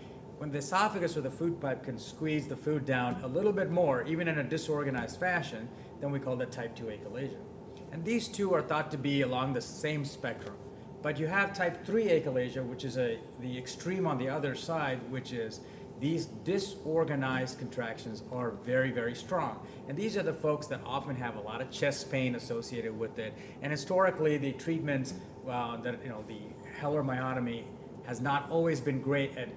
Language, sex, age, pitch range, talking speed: English, male, 30-49, 125-160 Hz, 195 wpm